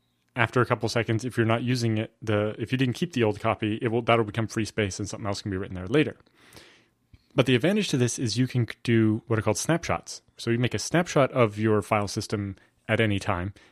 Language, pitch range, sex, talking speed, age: English, 105-125 Hz, male, 245 wpm, 20-39